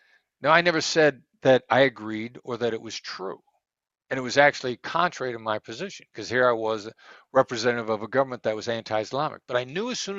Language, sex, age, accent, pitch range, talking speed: English, male, 60-79, American, 110-145 Hz, 220 wpm